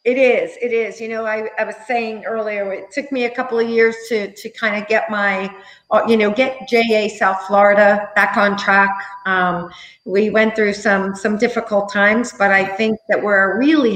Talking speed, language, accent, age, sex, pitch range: 200 wpm, English, American, 50-69, female, 190-230 Hz